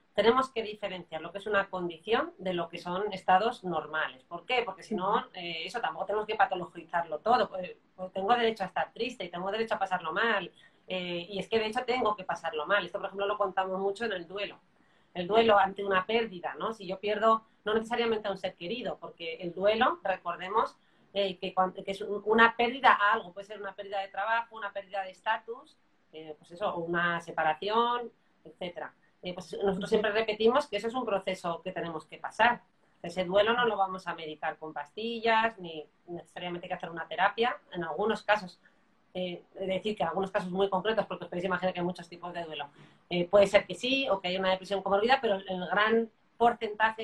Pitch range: 175-215 Hz